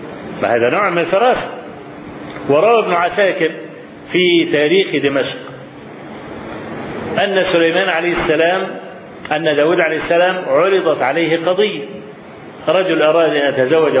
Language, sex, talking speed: Arabic, male, 110 wpm